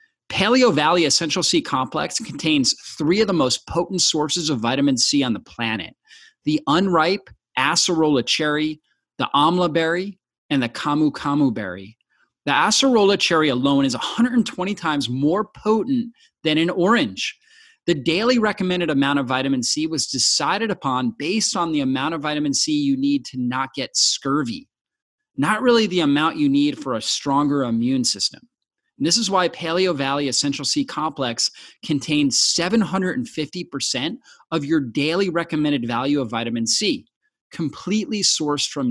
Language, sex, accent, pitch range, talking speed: English, male, American, 140-220 Hz, 150 wpm